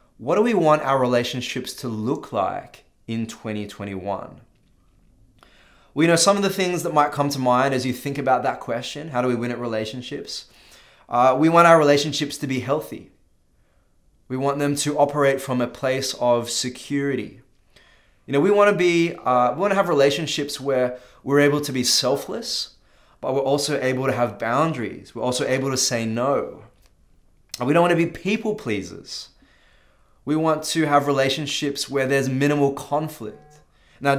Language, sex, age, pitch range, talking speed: English, male, 20-39, 115-145 Hz, 175 wpm